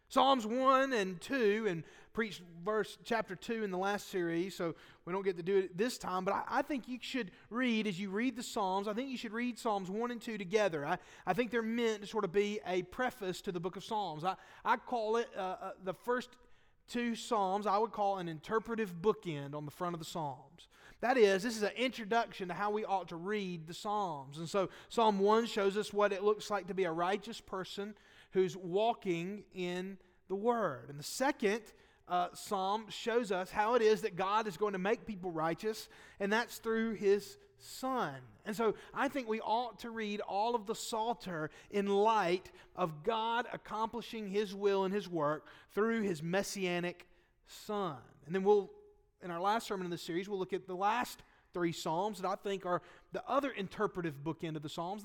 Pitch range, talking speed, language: 185-225 Hz, 210 wpm, English